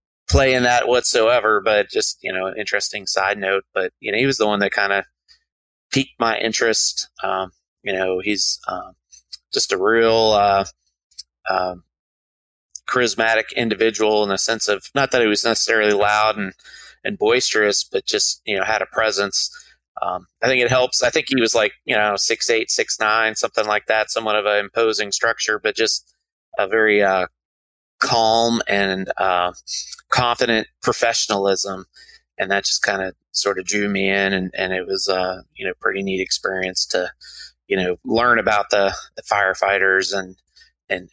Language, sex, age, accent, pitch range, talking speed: English, male, 30-49, American, 95-115 Hz, 180 wpm